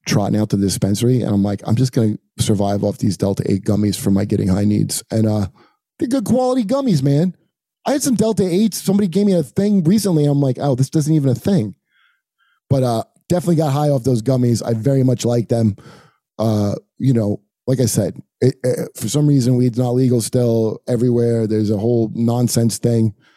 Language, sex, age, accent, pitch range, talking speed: English, male, 30-49, American, 110-160 Hz, 205 wpm